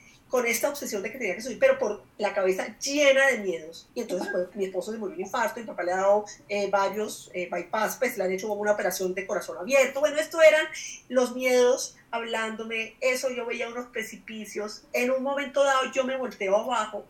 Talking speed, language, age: 215 wpm, Spanish, 30-49